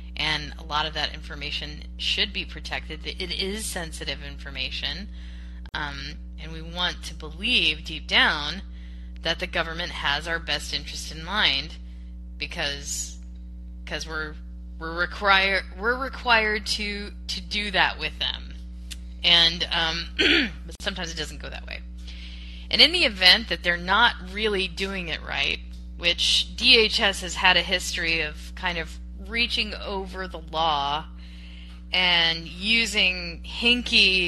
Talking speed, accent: 140 wpm, American